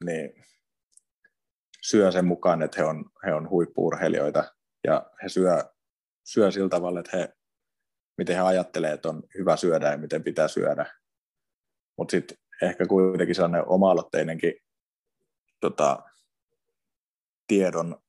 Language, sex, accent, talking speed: Finnish, male, native, 120 wpm